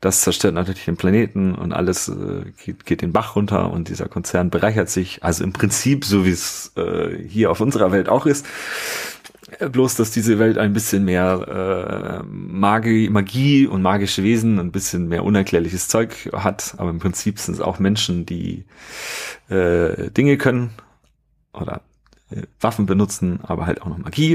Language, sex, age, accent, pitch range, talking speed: German, male, 40-59, German, 90-105 Hz, 175 wpm